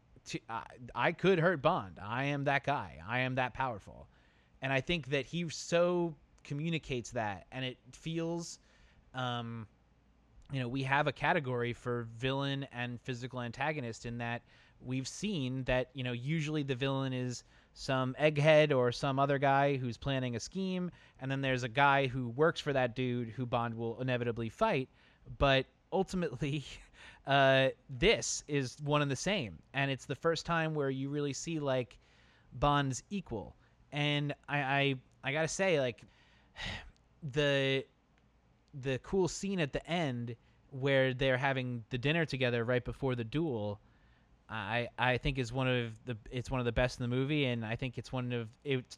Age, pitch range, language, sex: 30-49, 120-145 Hz, English, male